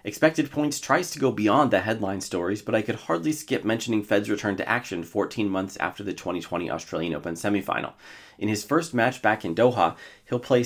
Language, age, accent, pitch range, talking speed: English, 30-49, American, 95-130 Hz, 205 wpm